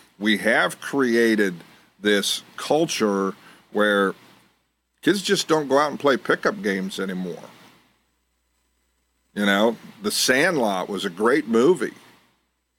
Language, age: English, 50-69